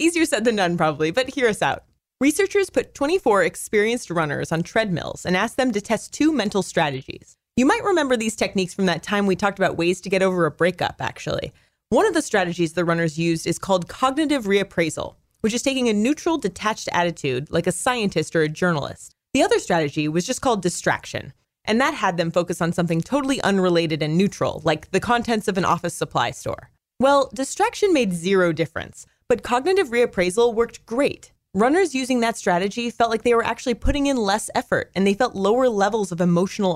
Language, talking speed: English, 200 wpm